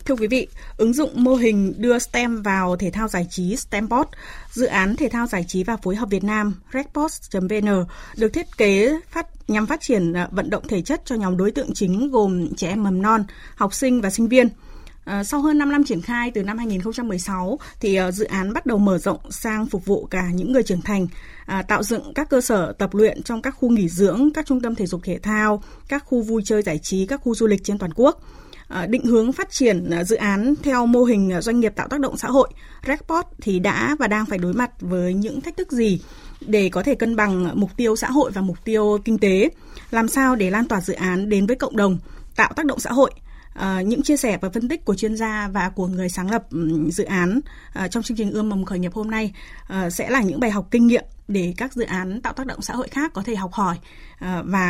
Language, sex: Vietnamese, female